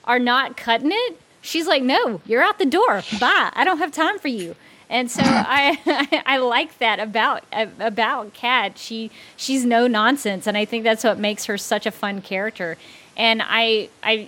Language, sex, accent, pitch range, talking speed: English, female, American, 205-255 Hz, 190 wpm